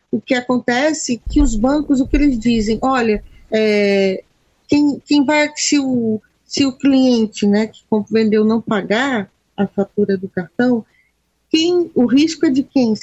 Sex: female